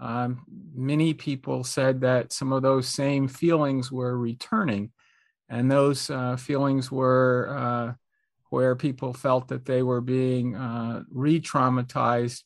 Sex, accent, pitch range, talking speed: male, American, 120-130 Hz, 130 wpm